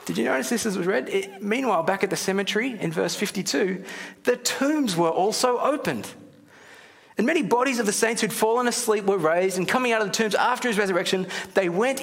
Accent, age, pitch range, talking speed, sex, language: Australian, 30-49, 175-225 Hz, 205 wpm, male, English